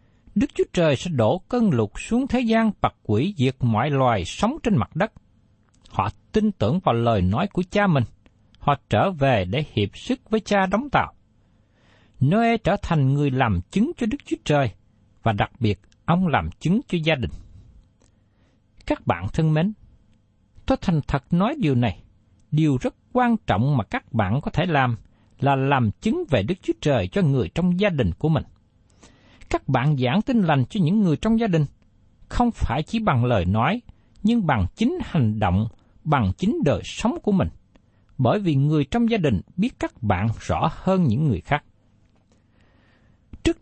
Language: Vietnamese